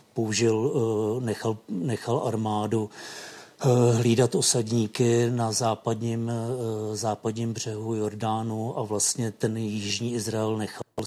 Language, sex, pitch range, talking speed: Czech, male, 105-120 Hz, 90 wpm